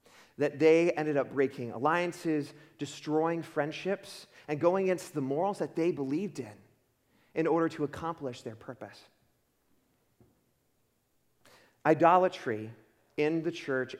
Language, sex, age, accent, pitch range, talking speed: English, male, 30-49, American, 130-165 Hz, 115 wpm